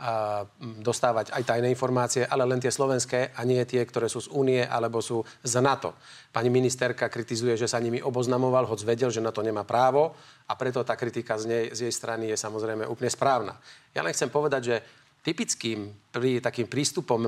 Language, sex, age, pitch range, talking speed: Slovak, male, 40-59, 115-130 Hz, 195 wpm